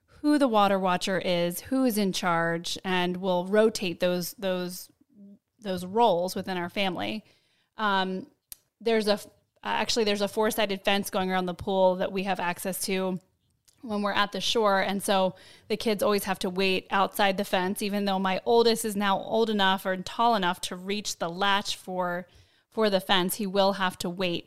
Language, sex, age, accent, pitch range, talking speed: English, female, 20-39, American, 180-215 Hz, 185 wpm